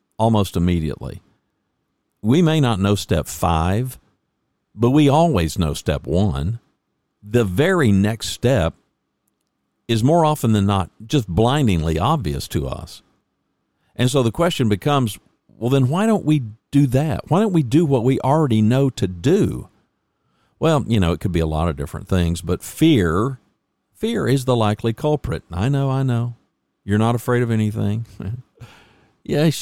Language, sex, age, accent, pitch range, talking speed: English, male, 50-69, American, 90-135 Hz, 160 wpm